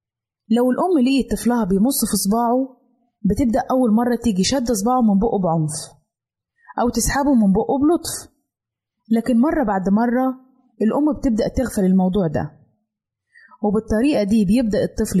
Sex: female